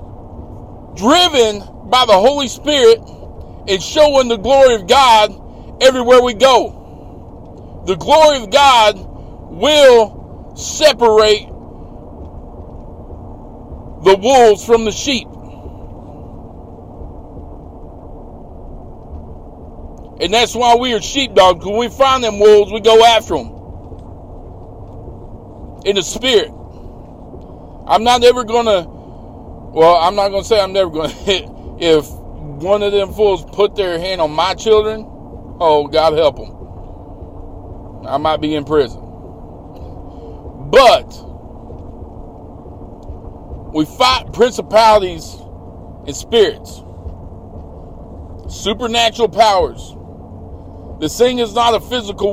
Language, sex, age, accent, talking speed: English, male, 50-69, American, 105 wpm